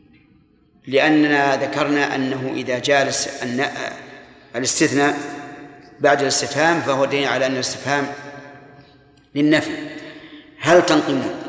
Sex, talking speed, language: male, 85 wpm, Arabic